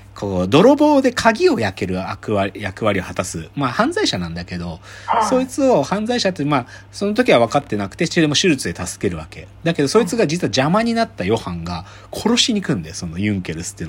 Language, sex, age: Japanese, male, 40-59